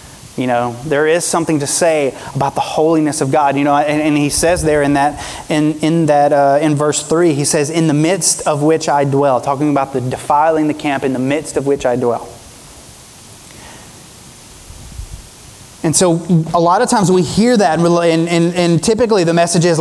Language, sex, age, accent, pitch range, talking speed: English, male, 30-49, American, 145-185 Hz, 200 wpm